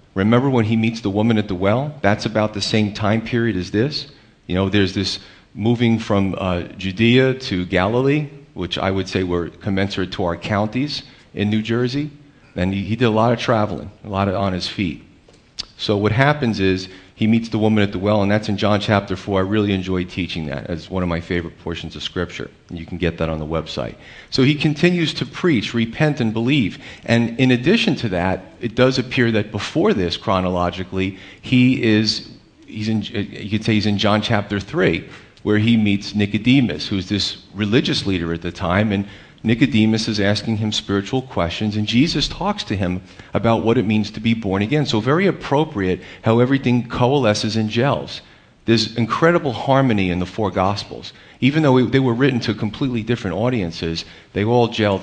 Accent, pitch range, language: American, 95-120 Hz, English